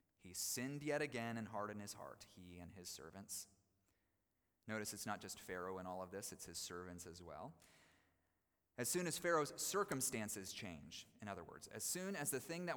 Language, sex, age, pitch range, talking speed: English, male, 30-49, 100-145 Hz, 195 wpm